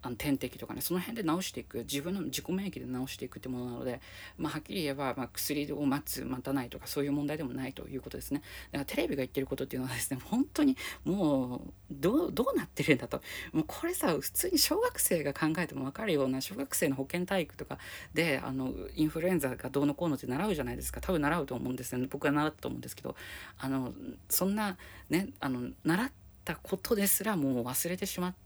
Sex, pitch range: female, 125-175 Hz